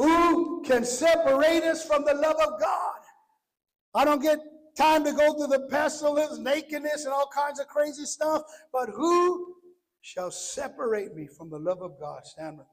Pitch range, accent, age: 175-285 Hz, American, 60-79